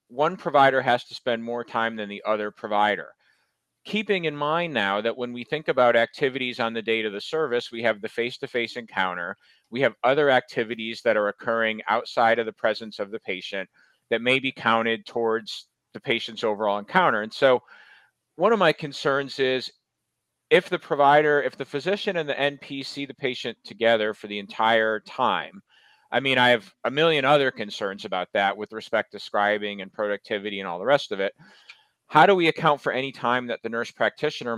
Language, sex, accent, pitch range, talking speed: English, male, American, 110-140 Hz, 195 wpm